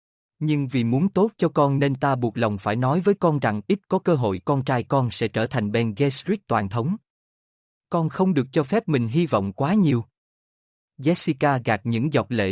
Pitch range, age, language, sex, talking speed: 115-155 Hz, 20-39, Vietnamese, male, 210 wpm